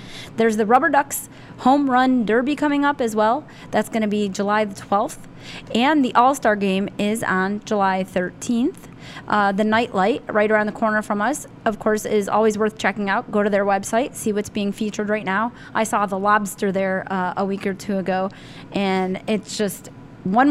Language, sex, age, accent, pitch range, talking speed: English, female, 20-39, American, 195-220 Hz, 195 wpm